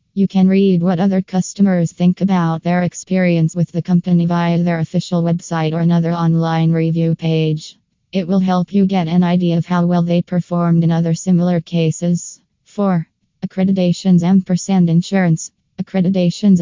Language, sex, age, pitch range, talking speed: English, female, 20-39, 165-175 Hz, 150 wpm